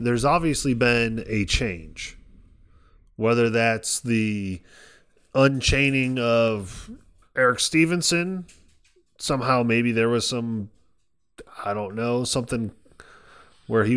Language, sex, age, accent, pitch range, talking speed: English, male, 20-39, American, 95-130 Hz, 100 wpm